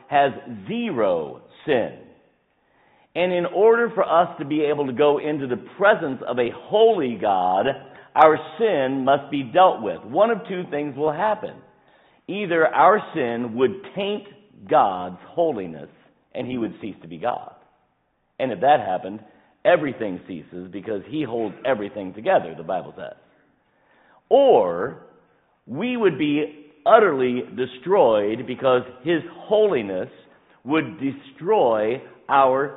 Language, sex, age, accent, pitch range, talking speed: English, male, 50-69, American, 135-210 Hz, 130 wpm